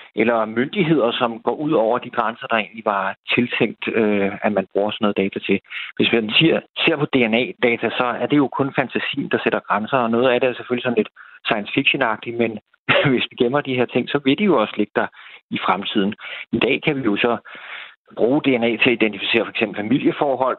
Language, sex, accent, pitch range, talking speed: Danish, male, native, 110-135 Hz, 215 wpm